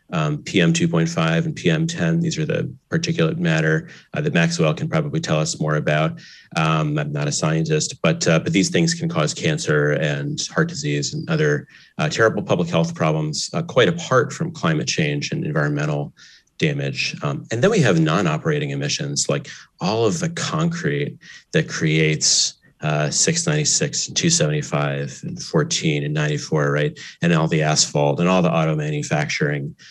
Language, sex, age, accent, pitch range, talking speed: English, male, 30-49, American, 130-165 Hz, 170 wpm